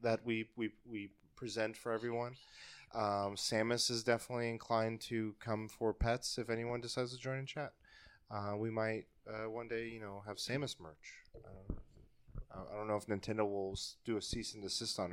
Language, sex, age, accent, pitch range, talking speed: English, male, 20-39, American, 105-130 Hz, 185 wpm